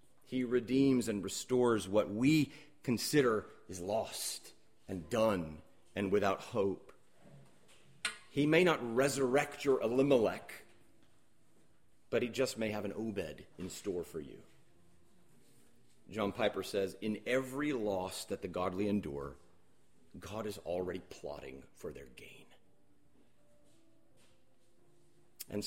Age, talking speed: 40-59, 115 wpm